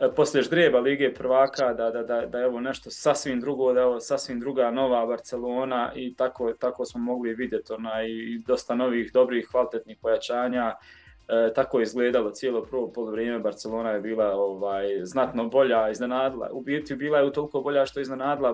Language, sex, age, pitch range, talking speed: Croatian, male, 20-39, 120-140 Hz, 180 wpm